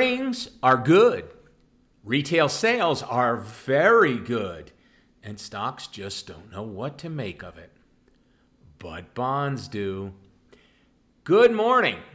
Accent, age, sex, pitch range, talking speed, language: American, 50-69, male, 95-140 Hz, 110 wpm, English